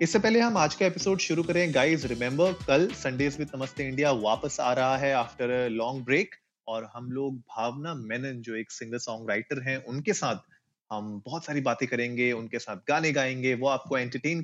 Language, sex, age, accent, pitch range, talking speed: Hindi, male, 30-49, native, 120-160 Hz, 185 wpm